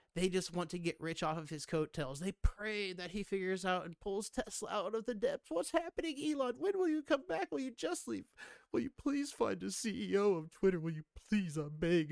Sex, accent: male, American